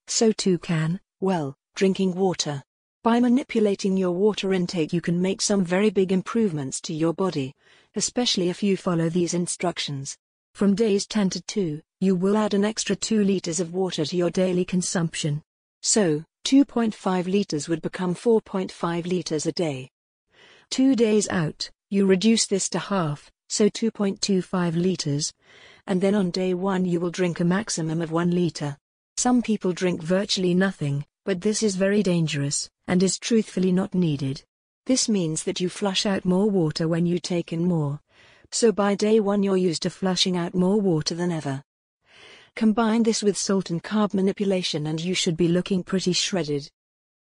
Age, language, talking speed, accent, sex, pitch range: 50-69, English, 170 wpm, British, female, 170-205 Hz